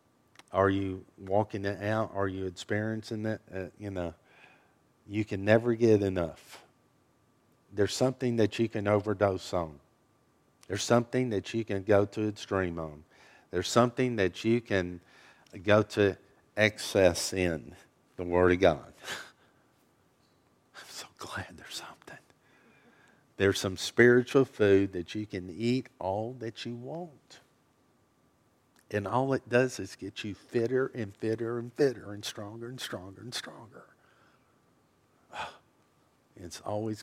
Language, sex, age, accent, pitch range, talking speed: English, male, 50-69, American, 95-115 Hz, 135 wpm